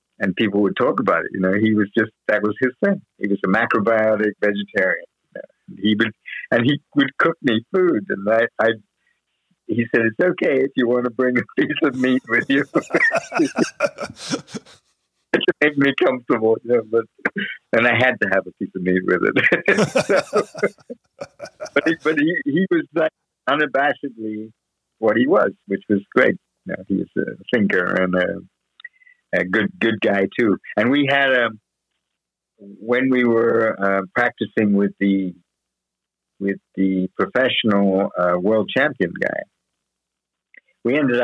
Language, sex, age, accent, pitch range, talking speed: English, male, 60-79, American, 100-130 Hz, 165 wpm